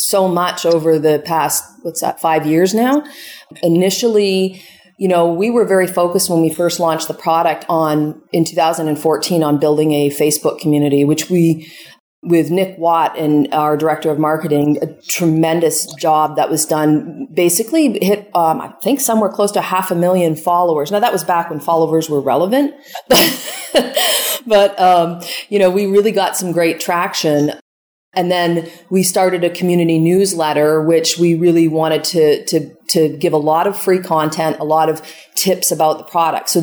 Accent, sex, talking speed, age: American, female, 170 wpm, 40-59